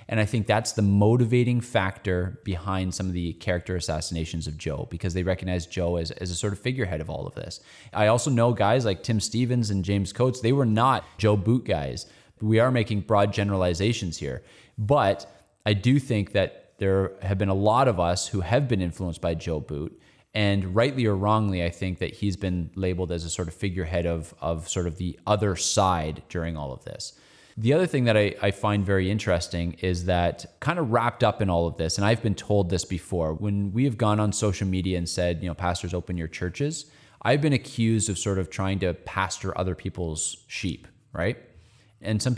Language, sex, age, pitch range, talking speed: English, male, 20-39, 90-110 Hz, 215 wpm